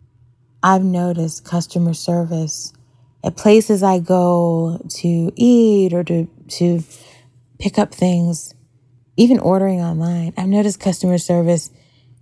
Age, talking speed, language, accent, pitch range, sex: 30-49, 115 wpm, English, American, 125-175 Hz, female